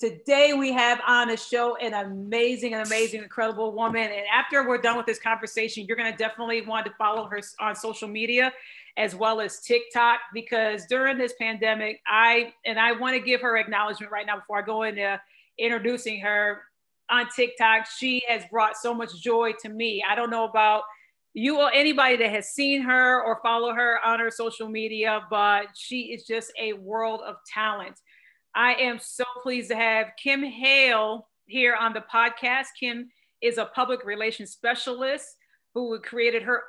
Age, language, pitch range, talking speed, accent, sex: 40-59, English, 215-245 Hz, 180 wpm, American, female